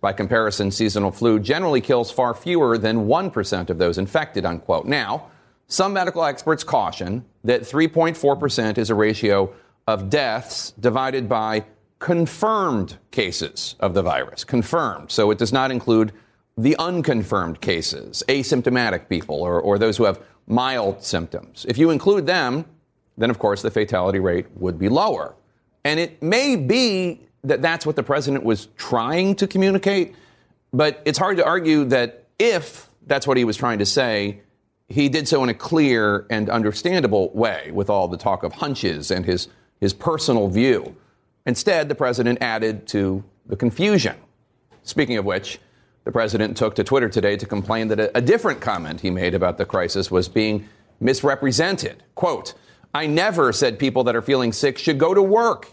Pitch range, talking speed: 105-155 Hz, 165 wpm